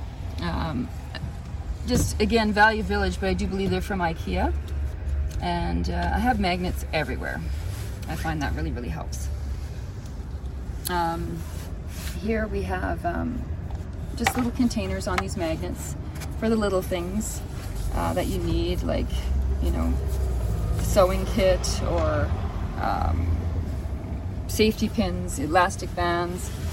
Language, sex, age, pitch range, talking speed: English, female, 30-49, 80-95 Hz, 120 wpm